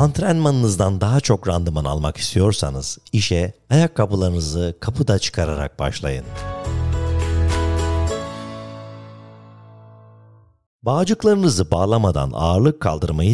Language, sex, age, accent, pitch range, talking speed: Turkish, male, 50-69, native, 85-120 Hz, 65 wpm